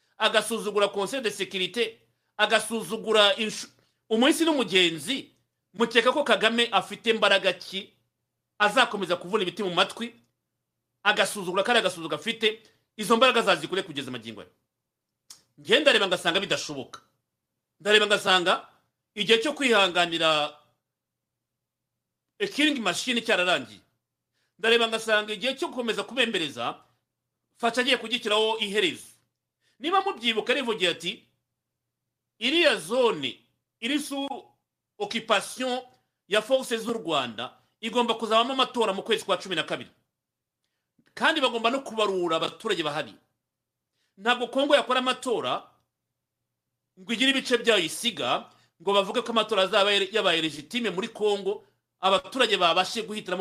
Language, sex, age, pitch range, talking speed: English, male, 40-59, 190-245 Hz, 105 wpm